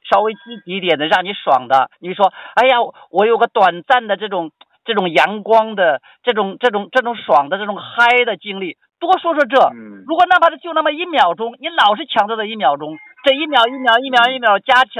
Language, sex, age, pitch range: Chinese, male, 50-69, 165-255 Hz